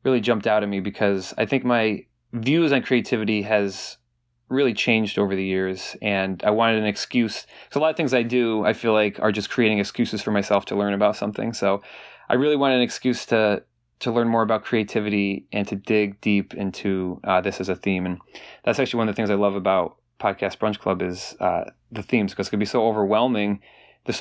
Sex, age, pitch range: male, 20-39, 100-120 Hz